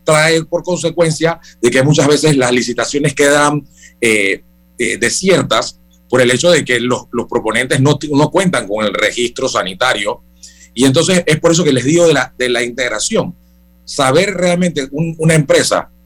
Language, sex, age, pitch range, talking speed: Spanish, male, 40-59, 125-170 Hz, 165 wpm